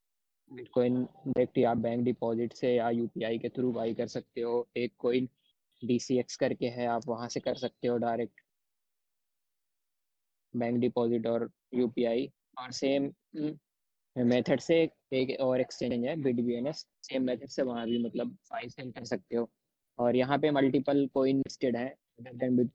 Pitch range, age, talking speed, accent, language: 120-135 Hz, 20-39, 155 wpm, native, Hindi